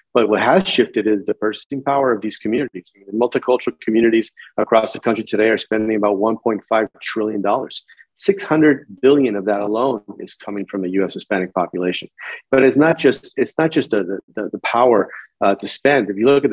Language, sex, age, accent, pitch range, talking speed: English, male, 40-59, American, 105-125 Hz, 190 wpm